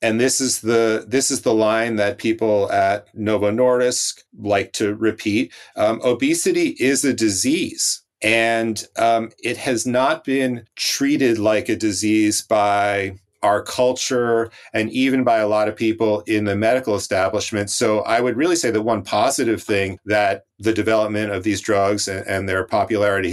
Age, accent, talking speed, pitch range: 40-59, American, 165 wpm, 105-125 Hz